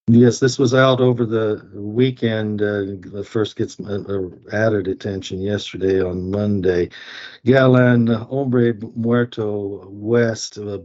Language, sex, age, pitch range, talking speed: English, male, 50-69, 95-115 Hz, 135 wpm